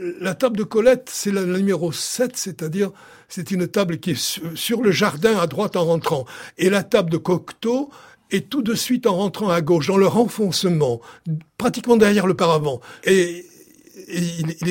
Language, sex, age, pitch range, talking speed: French, male, 60-79, 165-215 Hz, 190 wpm